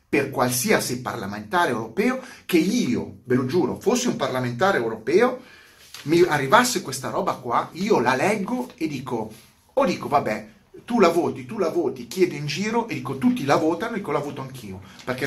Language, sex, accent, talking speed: Italian, male, native, 175 wpm